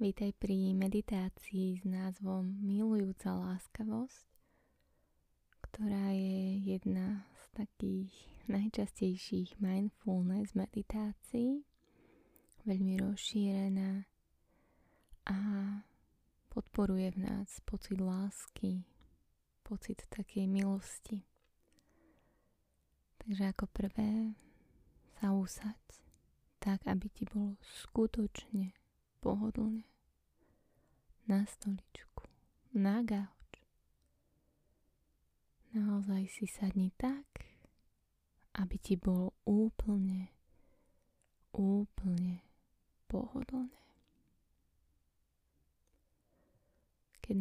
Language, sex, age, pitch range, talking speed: Slovak, female, 20-39, 185-210 Hz, 65 wpm